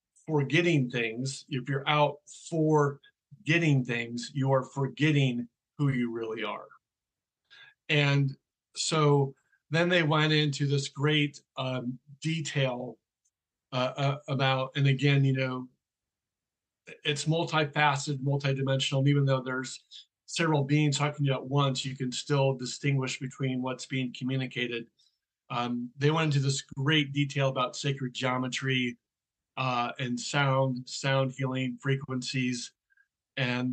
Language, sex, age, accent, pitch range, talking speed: English, male, 50-69, American, 125-140 Hz, 125 wpm